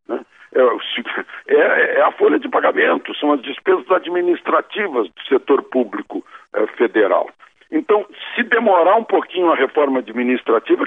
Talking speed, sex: 115 wpm, male